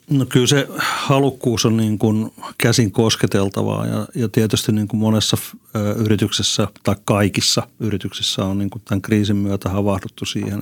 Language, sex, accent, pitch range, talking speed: Finnish, male, native, 100-115 Hz, 145 wpm